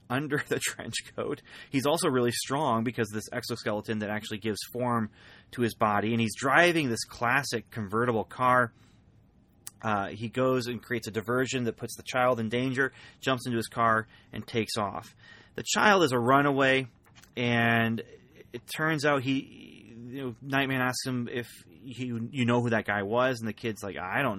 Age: 30-49